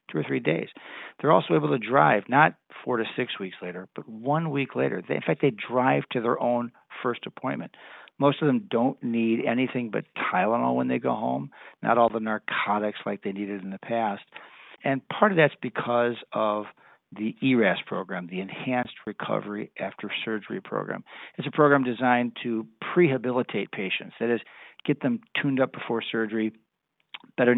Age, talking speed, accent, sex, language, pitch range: 50-69, 175 wpm, American, male, English, 110-130 Hz